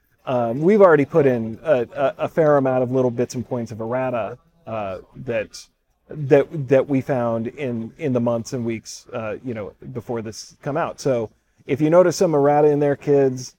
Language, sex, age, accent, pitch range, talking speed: English, male, 40-59, American, 120-150 Hz, 200 wpm